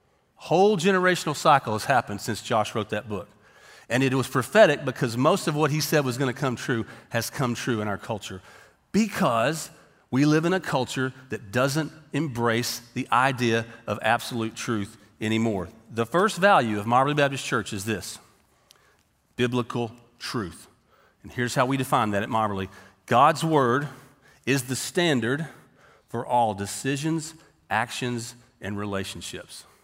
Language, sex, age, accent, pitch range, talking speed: English, male, 40-59, American, 115-170 Hz, 155 wpm